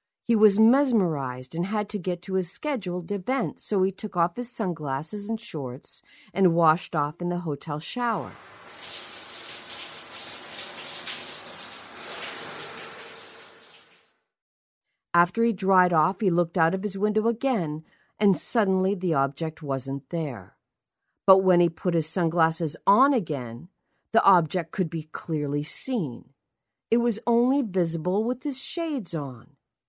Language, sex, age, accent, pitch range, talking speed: English, female, 40-59, American, 165-230 Hz, 130 wpm